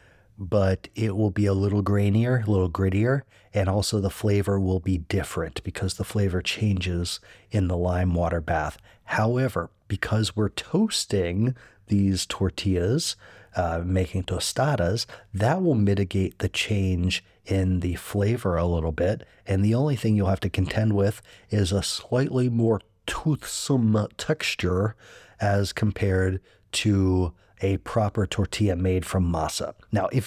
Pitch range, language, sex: 95-115 Hz, English, male